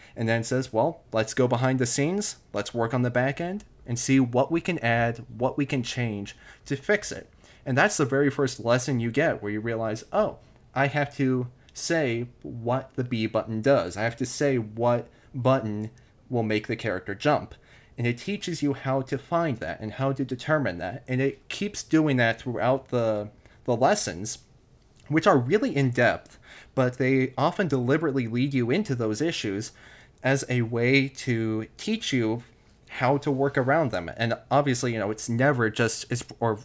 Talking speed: 190 wpm